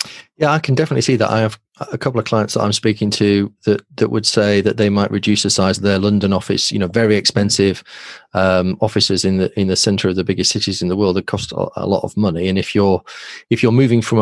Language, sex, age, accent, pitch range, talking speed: English, male, 30-49, British, 95-110 Hz, 260 wpm